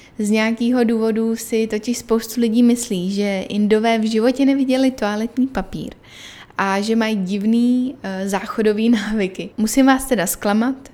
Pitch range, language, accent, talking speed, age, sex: 200-225 Hz, Czech, native, 135 wpm, 10-29, female